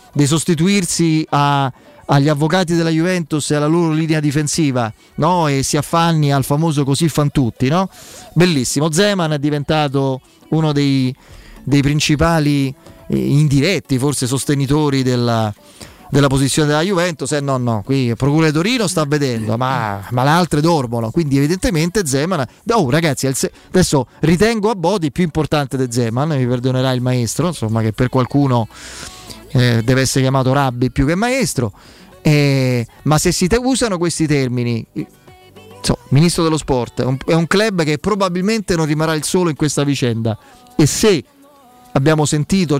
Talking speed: 155 wpm